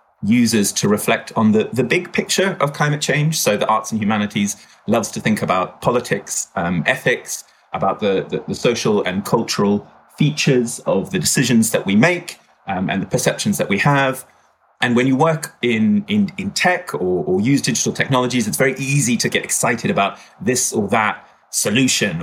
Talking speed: 185 wpm